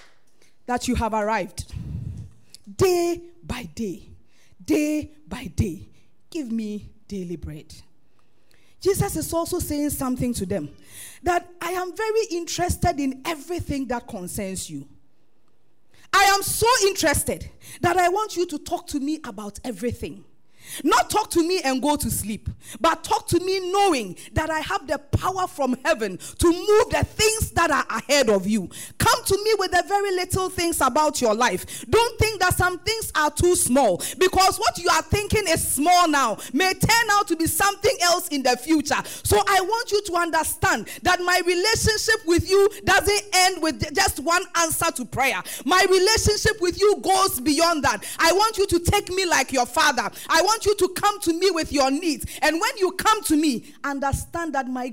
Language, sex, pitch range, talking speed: English, female, 270-380 Hz, 180 wpm